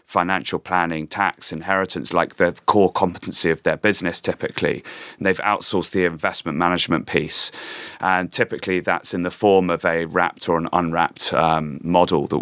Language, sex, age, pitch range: English, male, 30-49, 85-95 Hz